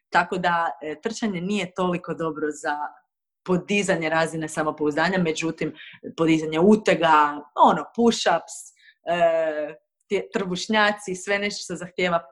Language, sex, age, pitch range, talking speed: Croatian, female, 30-49, 160-200 Hz, 95 wpm